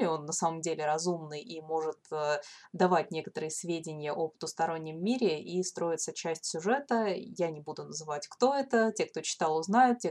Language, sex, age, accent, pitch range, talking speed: Russian, female, 20-39, native, 160-190 Hz, 170 wpm